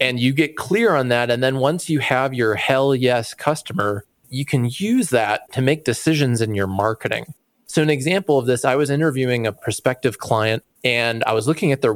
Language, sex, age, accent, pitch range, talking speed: English, male, 30-49, American, 115-145 Hz, 210 wpm